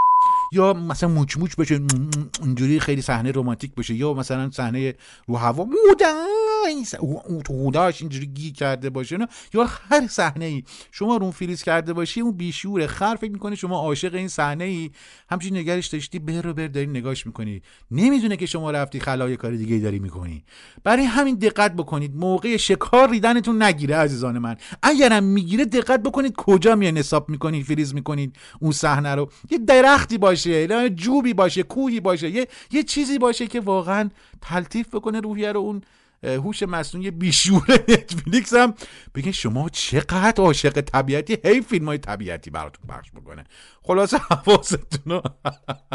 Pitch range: 140-210 Hz